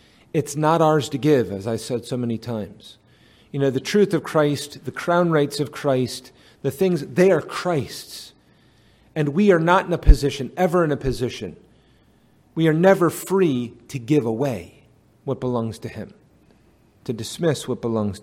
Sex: male